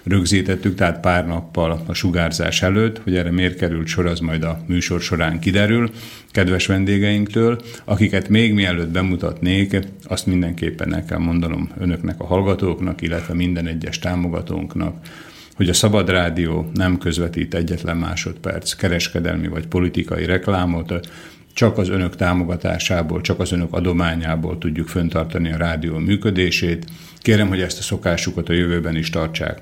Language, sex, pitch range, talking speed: Slovak, male, 85-95 Hz, 140 wpm